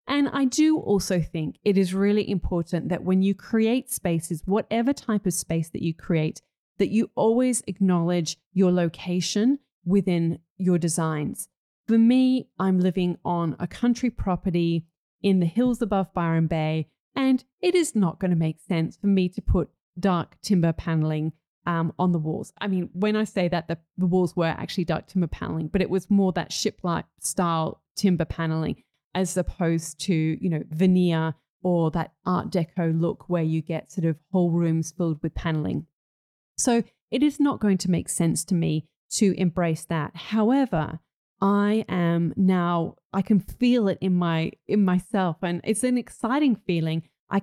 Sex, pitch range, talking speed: female, 165-200 Hz, 175 wpm